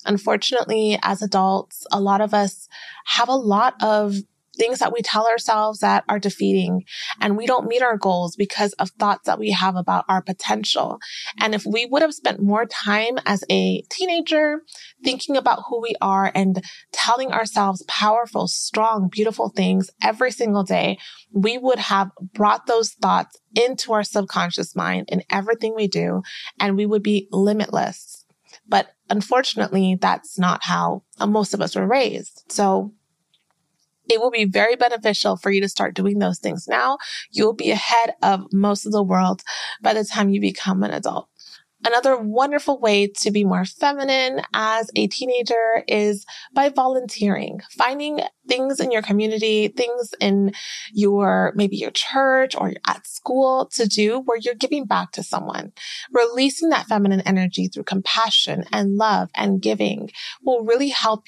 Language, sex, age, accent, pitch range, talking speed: English, female, 20-39, American, 195-240 Hz, 165 wpm